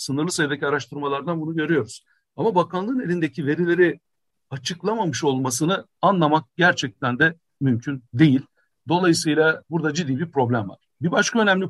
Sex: male